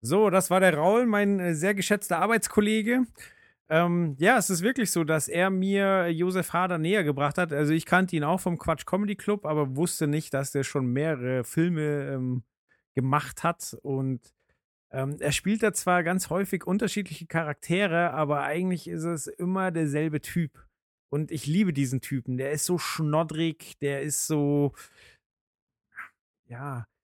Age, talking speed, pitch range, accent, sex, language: 40-59, 160 wpm, 140-180 Hz, German, male, German